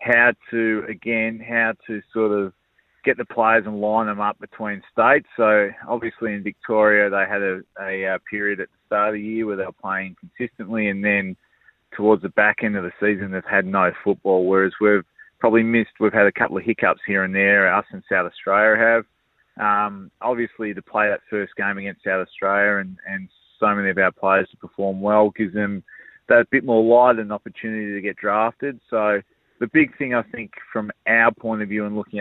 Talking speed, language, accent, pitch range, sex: 205 wpm, English, Australian, 95-110 Hz, male